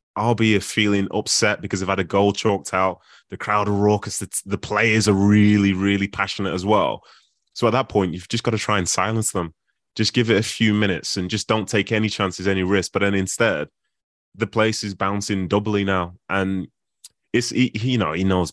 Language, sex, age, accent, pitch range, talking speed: English, male, 20-39, British, 85-105 Hz, 220 wpm